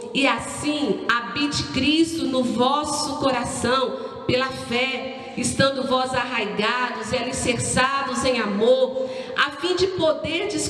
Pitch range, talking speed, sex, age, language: 235-305 Hz, 110 wpm, female, 50-69, Portuguese